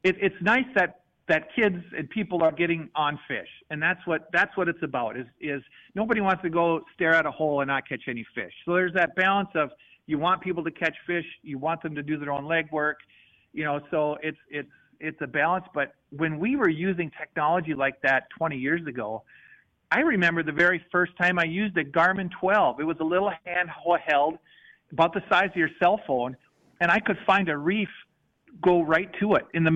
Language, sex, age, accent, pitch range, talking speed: English, male, 50-69, American, 145-185 Hz, 215 wpm